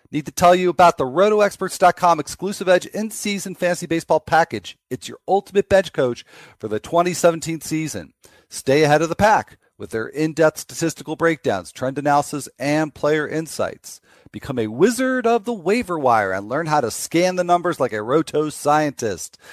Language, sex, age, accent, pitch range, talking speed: English, male, 40-59, American, 120-175 Hz, 170 wpm